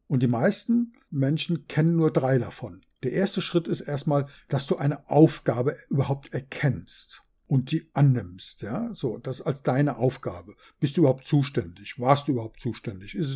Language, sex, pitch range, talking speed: German, male, 125-165 Hz, 170 wpm